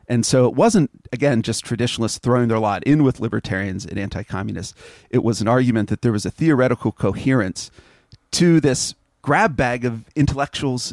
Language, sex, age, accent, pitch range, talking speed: English, male, 40-59, American, 110-145 Hz, 170 wpm